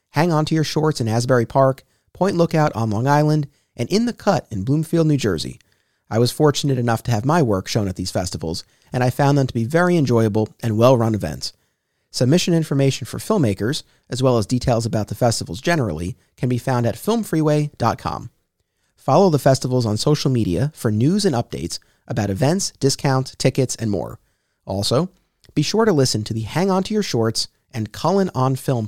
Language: English